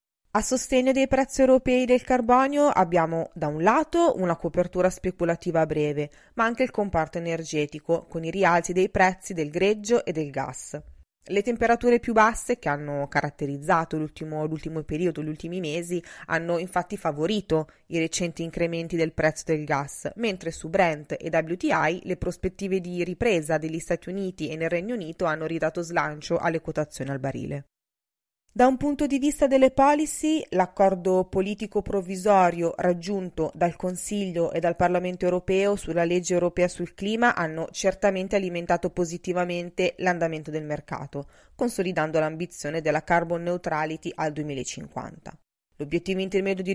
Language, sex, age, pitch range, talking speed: Italian, female, 20-39, 160-195 Hz, 150 wpm